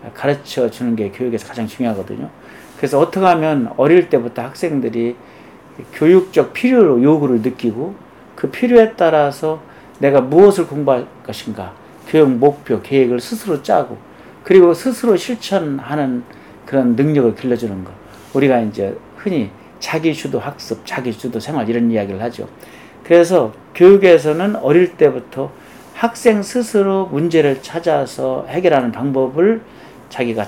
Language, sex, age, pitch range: Korean, male, 40-59, 120-180 Hz